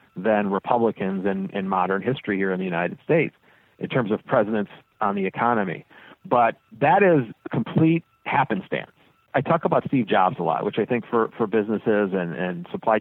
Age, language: 50-69, English